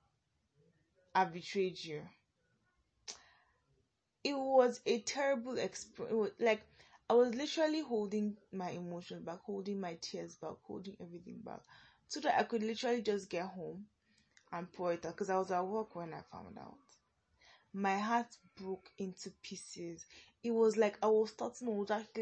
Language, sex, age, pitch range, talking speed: English, female, 10-29, 185-260 Hz, 155 wpm